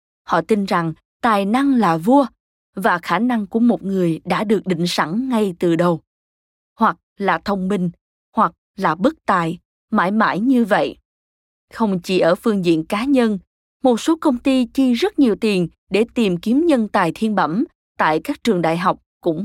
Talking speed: 185 wpm